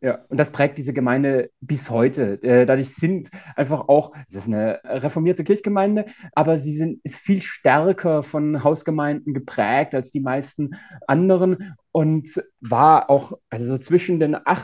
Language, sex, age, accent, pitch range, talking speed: German, male, 30-49, German, 135-165 Hz, 150 wpm